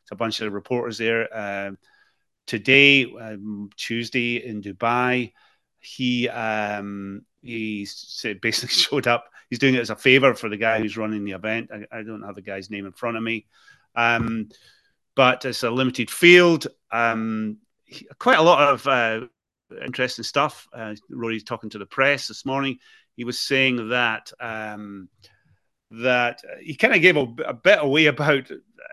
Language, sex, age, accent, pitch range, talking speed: English, male, 30-49, British, 110-135 Hz, 160 wpm